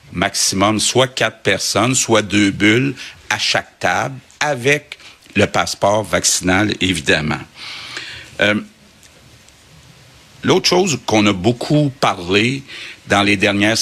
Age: 60-79